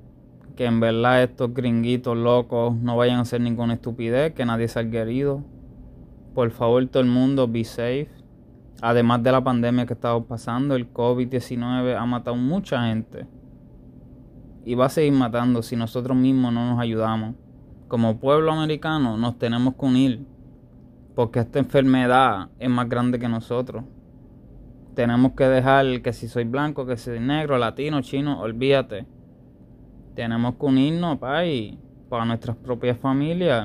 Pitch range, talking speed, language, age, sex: 120-140 Hz, 150 wpm, English, 20-39, male